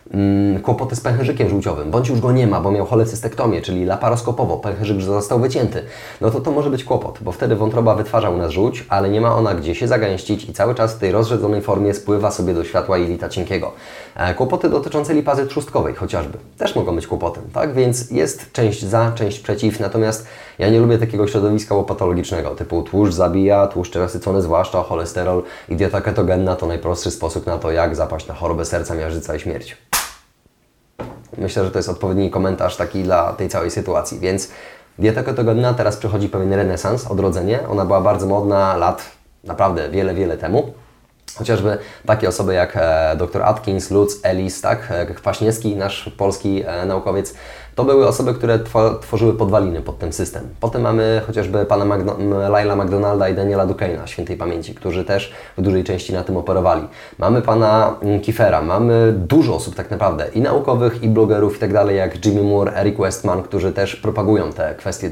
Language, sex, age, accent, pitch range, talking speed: Polish, male, 20-39, native, 95-115 Hz, 180 wpm